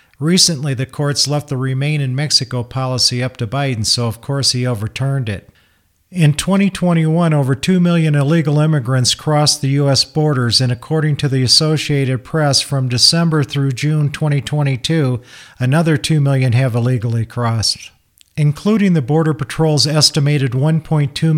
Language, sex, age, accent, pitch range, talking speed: English, male, 50-69, American, 130-155 Hz, 145 wpm